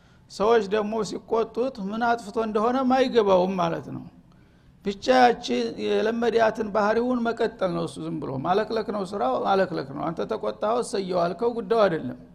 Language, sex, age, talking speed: Amharic, male, 60-79, 125 wpm